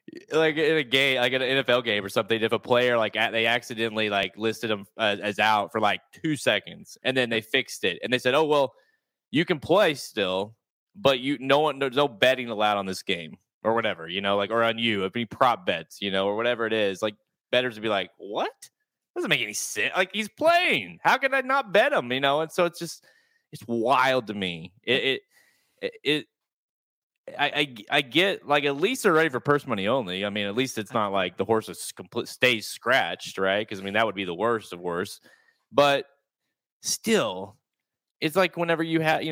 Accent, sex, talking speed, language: American, male, 230 wpm, English